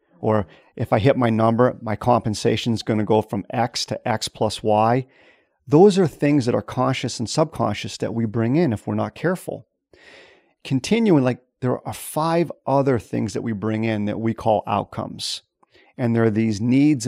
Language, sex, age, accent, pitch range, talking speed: English, male, 40-59, American, 110-140 Hz, 190 wpm